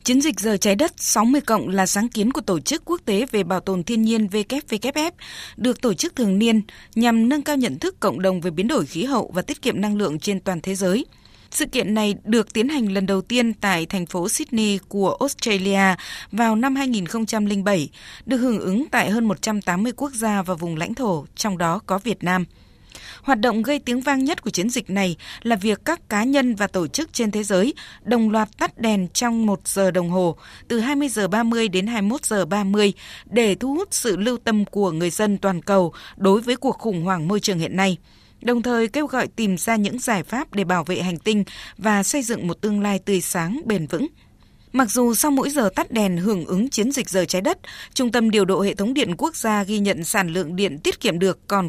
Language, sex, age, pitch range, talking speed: Vietnamese, female, 20-39, 190-245 Hz, 225 wpm